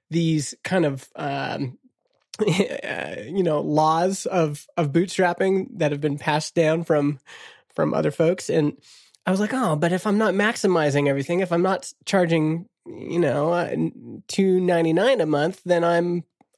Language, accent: English, American